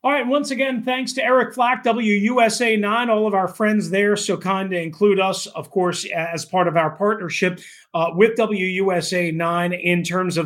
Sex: male